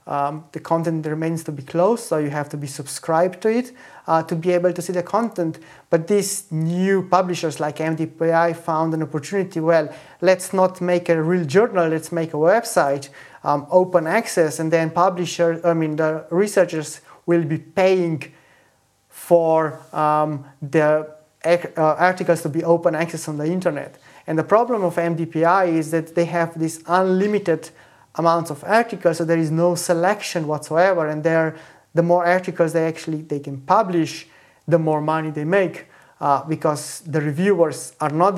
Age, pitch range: 30-49, 155-175 Hz